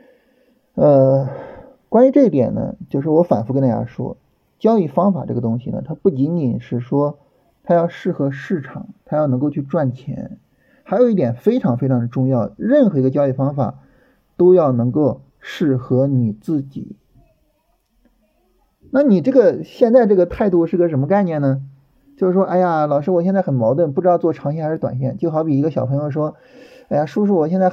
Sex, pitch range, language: male, 135-185 Hz, Chinese